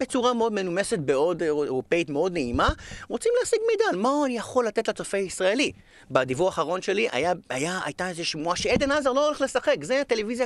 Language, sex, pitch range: Hebrew, male, 160-245 Hz